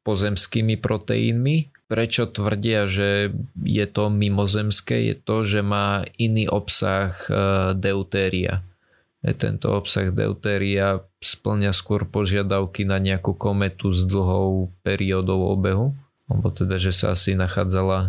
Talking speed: 115 wpm